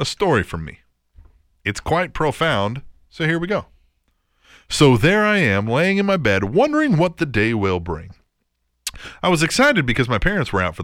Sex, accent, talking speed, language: male, American, 190 wpm, English